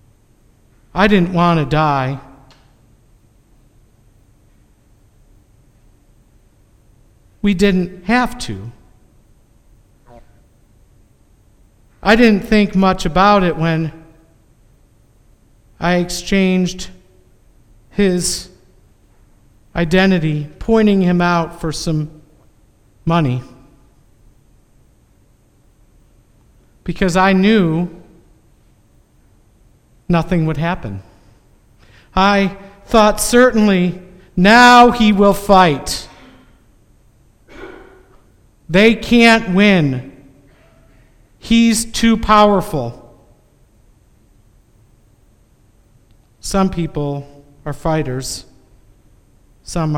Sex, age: male, 50-69